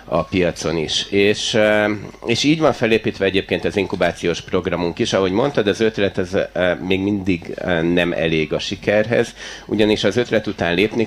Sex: male